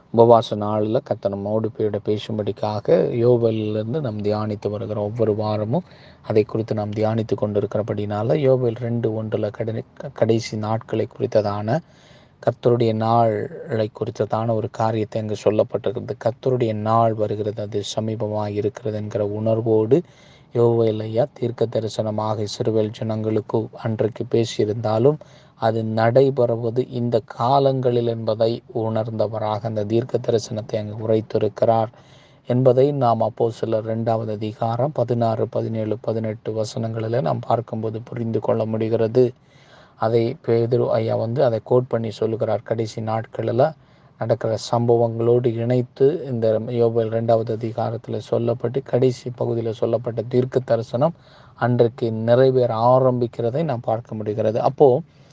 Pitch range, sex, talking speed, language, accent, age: 110-120 Hz, male, 105 wpm, Tamil, native, 20-39